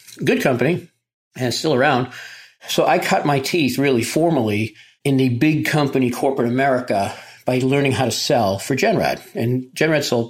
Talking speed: 165 wpm